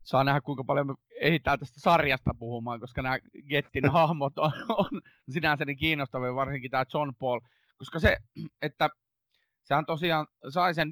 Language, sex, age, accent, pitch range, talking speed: Finnish, male, 30-49, native, 125-160 Hz, 160 wpm